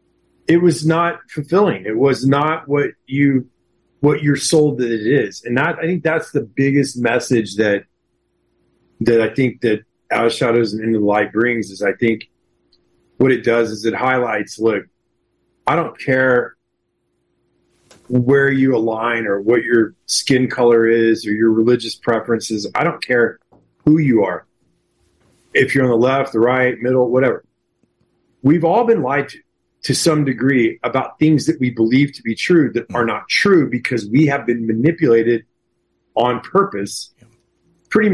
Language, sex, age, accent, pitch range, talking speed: English, male, 40-59, American, 115-145 Hz, 165 wpm